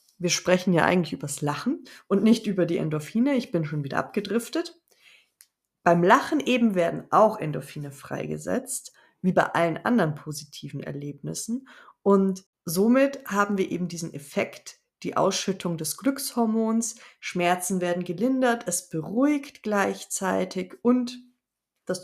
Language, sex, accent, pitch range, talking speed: German, female, German, 170-215 Hz, 135 wpm